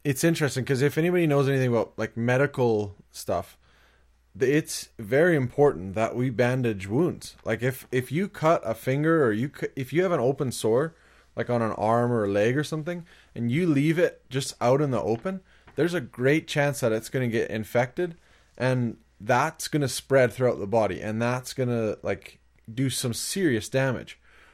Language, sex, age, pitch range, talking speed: English, male, 20-39, 115-145 Hz, 190 wpm